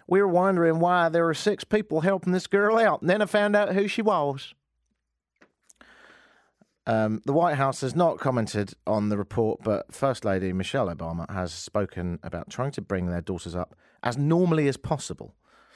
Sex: male